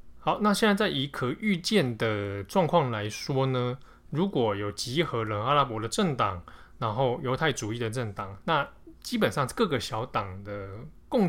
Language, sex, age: Chinese, male, 20-39